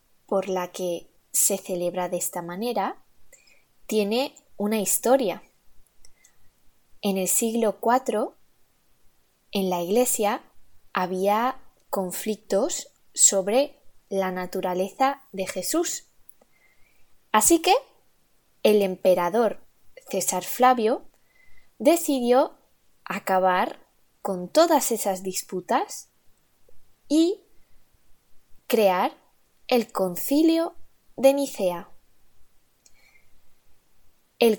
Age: 20-39